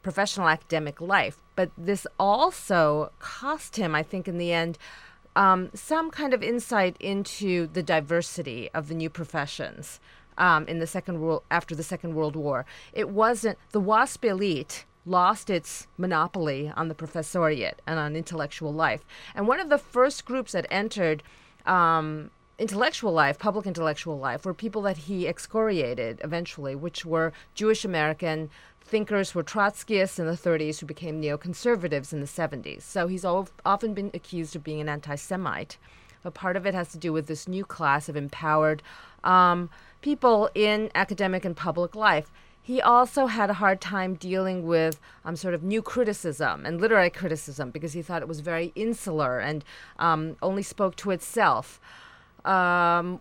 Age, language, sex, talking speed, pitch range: 40-59, English, female, 165 wpm, 160-205 Hz